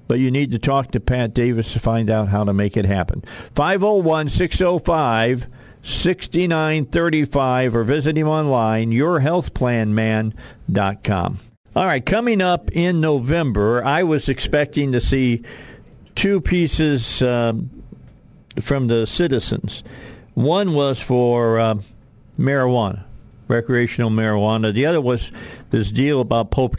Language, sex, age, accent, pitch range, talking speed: English, male, 50-69, American, 105-130 Hz, 120 wpm